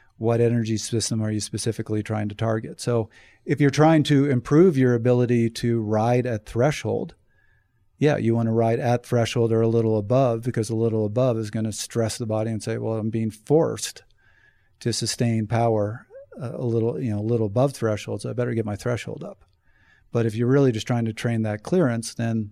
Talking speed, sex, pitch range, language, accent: 205 wpm, male, 110-125 Hz, English, American